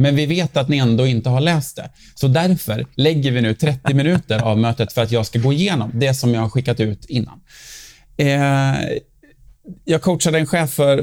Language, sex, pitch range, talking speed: Swedish, male, 120-155 Hz, 200 wpm